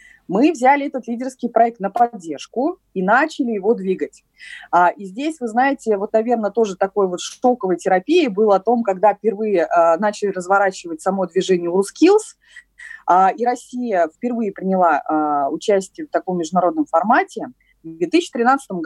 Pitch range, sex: 190-245 Hz, female